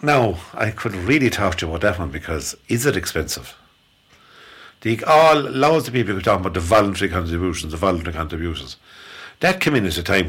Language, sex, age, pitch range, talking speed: English, male, 60-79, 85-110 Hz, 200 wpm